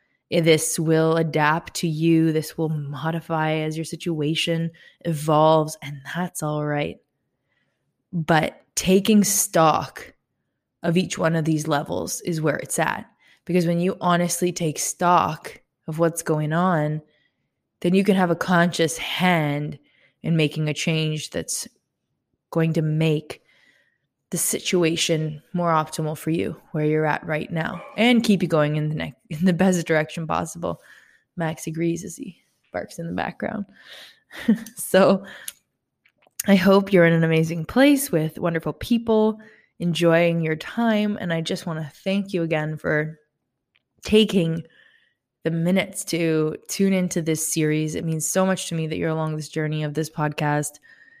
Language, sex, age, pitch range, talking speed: English, female, 20-39, 155-180 Hz, 150 wpm